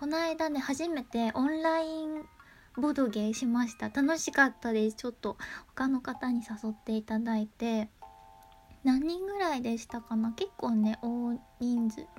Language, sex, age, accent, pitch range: Japanese, female, 20-39, native, 225-300 Hz